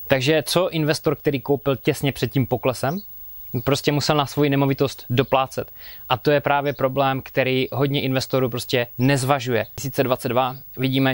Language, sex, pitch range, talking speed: Czech, male, 125-145 Hz, 150 wpm